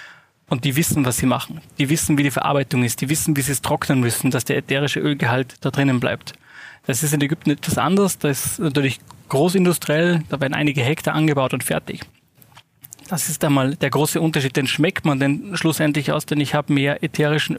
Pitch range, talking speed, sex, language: 135-155 Hz, 205 wpm, male, German